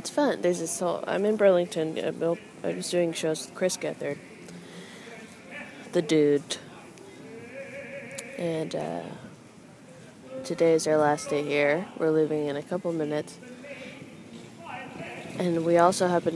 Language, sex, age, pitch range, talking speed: English, female, 20-39, 150-200 Hz, 130 wpm